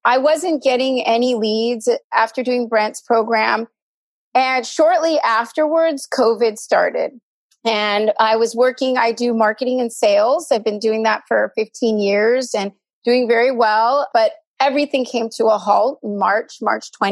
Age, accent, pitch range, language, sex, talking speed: 30-49, American, 225-270 Hz, English, female, 145 wpm